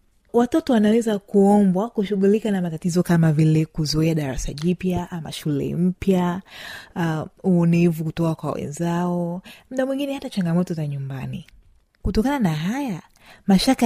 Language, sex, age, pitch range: Swahili, female, 30-49, 165-215 Hz